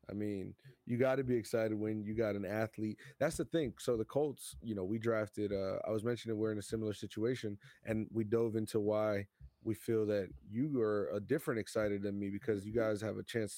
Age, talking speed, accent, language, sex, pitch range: 30-49, 230 wpm, American, English, male, 100-115 Hz